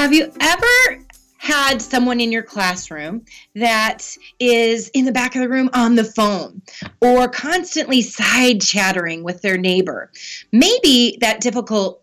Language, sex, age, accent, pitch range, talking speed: English, female, 30-49, American, 215-280 Hz, 140 wpm